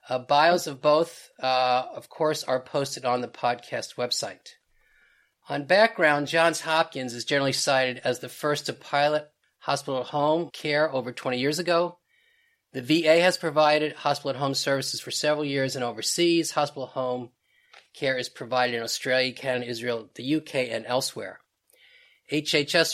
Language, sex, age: English, male, 40-59